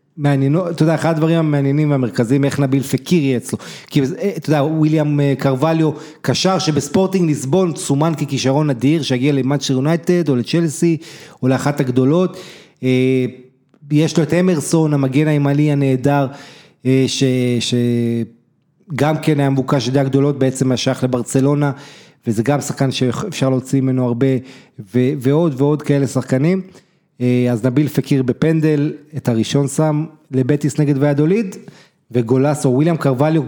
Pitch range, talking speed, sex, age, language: 130-155 Hz, 130 wpm, male, 30-49, Hebrew